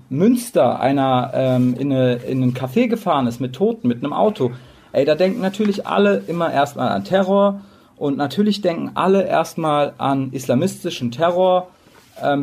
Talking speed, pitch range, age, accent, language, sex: 150 wpm, 130-175 Hz, 40-59, German, German, male